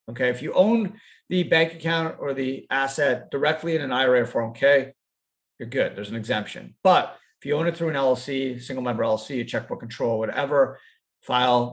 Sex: male